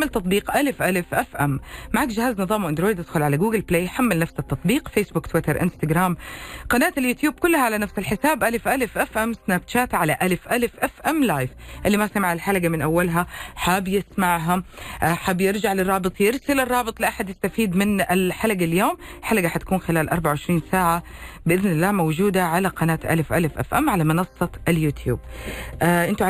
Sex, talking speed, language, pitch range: female, 165 wpm, Arabic, 160-215 Hz